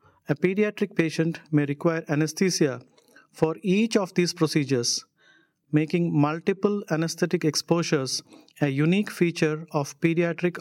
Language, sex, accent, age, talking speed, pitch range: English, male, Indian, 50-69, 115 wpm, 150-175 Hz